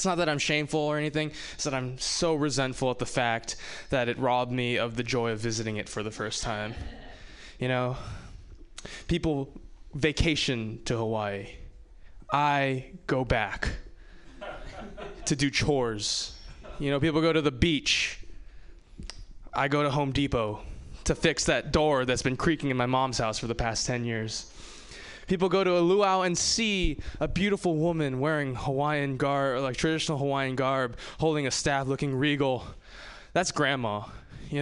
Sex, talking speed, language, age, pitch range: male, 165 wpm, English, 20-39, 115-155 Hz